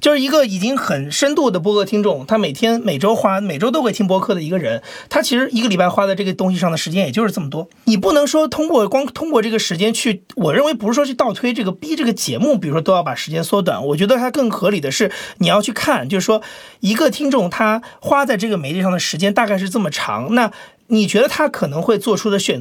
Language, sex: Chinese, male